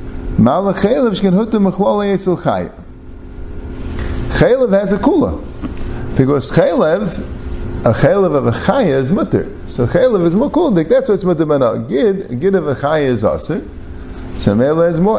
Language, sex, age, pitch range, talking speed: English, male, 50-69, 140-215 Hz, 125 wpm